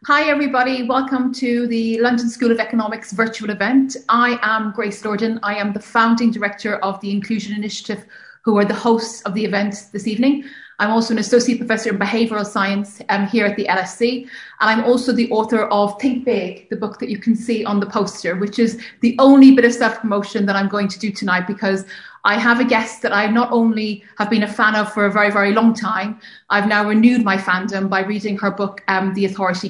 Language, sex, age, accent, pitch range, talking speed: English, female, 30-49, Irish, 205-235 Hz, 220 wpm